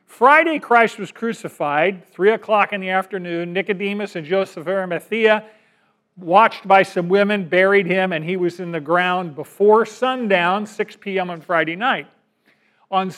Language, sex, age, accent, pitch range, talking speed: English, male, 40-59, American, 175-220 Hz, 155 wpm